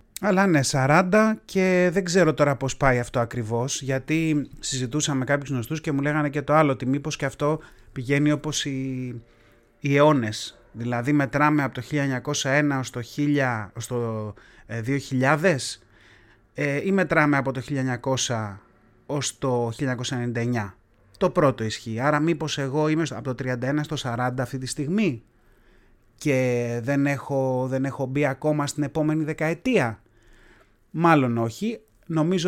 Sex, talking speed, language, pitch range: male, 145 wpm, Greek, 125-165 Hz